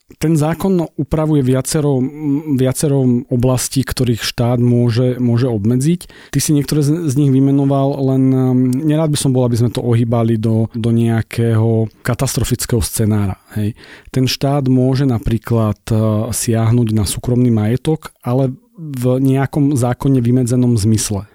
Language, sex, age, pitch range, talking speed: Slovak, male, 40-59, 115-130 Hz, 130 wpm